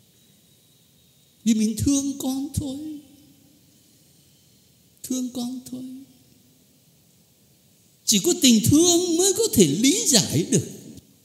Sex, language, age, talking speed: male, Vietnamese, 60-79, 95 wpm